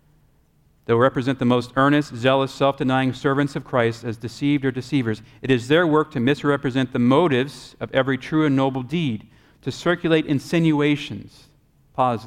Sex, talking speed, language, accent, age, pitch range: male, 155 wpm, English, American, 40-59, 125-155 Hz